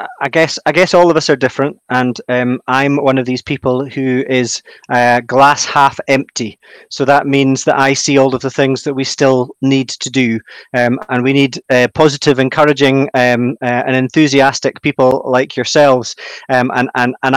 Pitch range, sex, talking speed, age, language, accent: 135-150 Hz, male, 195 wpm, 30-49, English, British